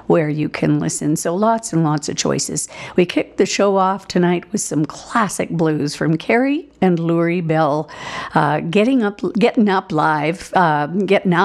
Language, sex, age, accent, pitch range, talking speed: English, female, 50-69, American, 165-205 Hz, 175 wpm